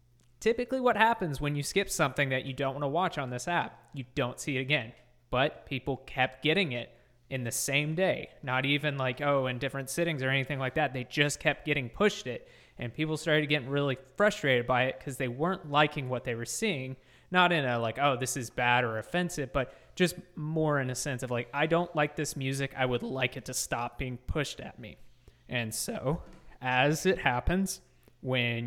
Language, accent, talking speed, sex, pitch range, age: English, American, 215 wpm, male, 120-150 Hz, 20-39